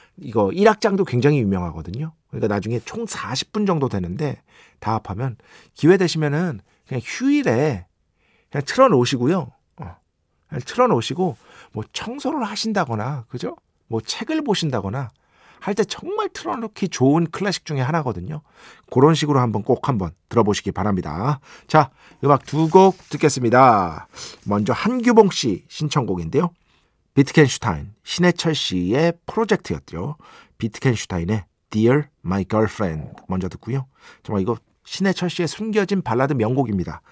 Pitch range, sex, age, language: 100-165 Hz, male, 50-69, Korean